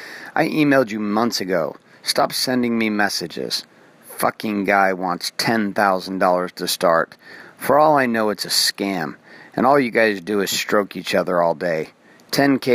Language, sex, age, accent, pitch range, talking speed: English, male, 40-59, American, 100-115 Hz, 160 wpm